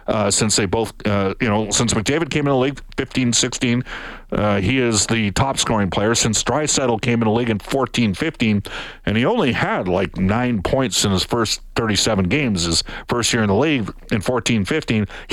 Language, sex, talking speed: English, male, 185 wpm